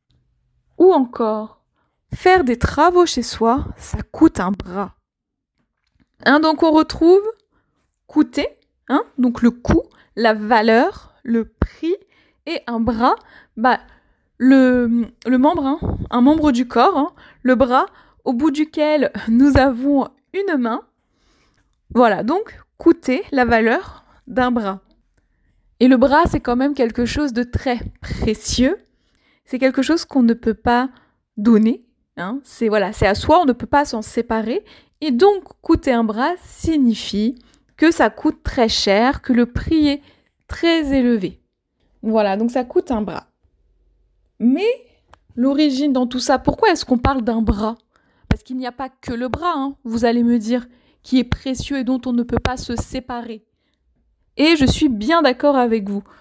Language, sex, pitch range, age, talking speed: French, female, 230-300 Hz, 20-39, 155 wpm